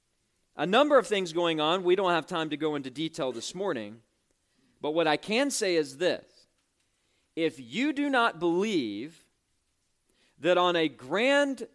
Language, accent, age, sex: English, American, 40-59, male